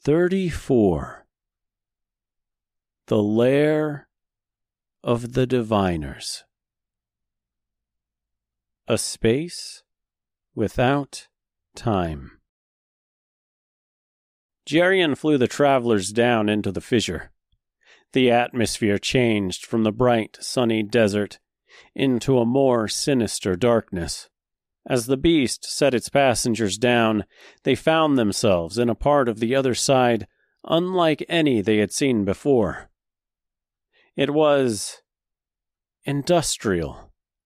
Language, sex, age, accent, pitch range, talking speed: English, male, 40-59, American, 105-140 Hz, 95 wpm